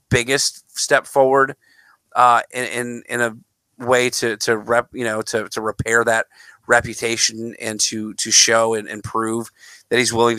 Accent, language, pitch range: American, English, 110-135 Hz